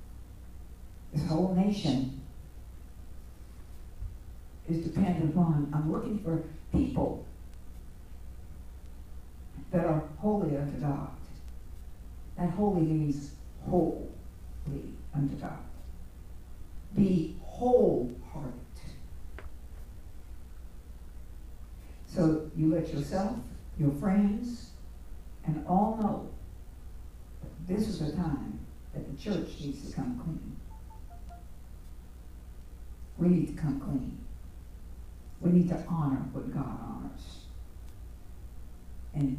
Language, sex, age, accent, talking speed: English, female, 60-79, American, 85 wpm